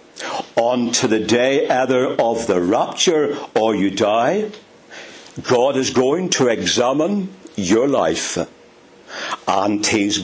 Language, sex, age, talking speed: English, male, 60-79, 115 wpm